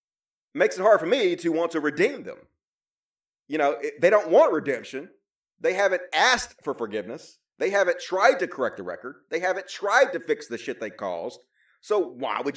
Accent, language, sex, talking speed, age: American, English, male, 195 wpm, 30-49